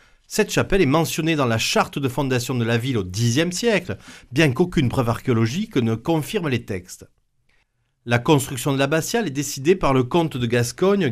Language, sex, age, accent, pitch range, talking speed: French, male, 40-59, French, 120-170 Hz, 185 wpm